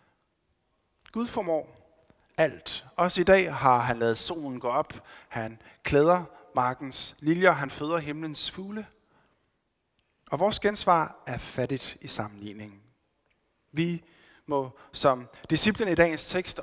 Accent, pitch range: native, 120-165 Hz